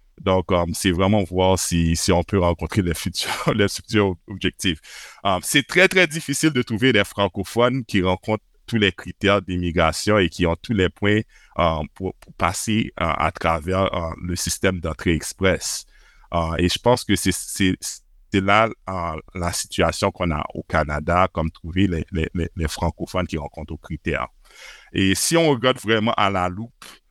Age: 60-79